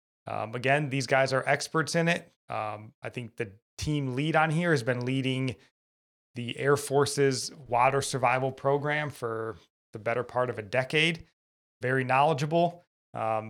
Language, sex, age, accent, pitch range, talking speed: English, male, 20-39, American, 125-145 Hz, 155 wpm